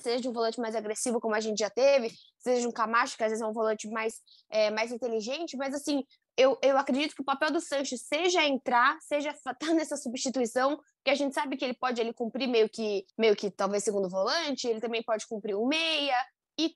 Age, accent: 10-29, Brazilian